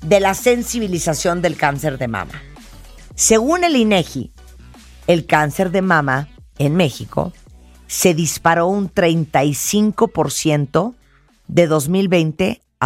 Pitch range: 145-200 Hz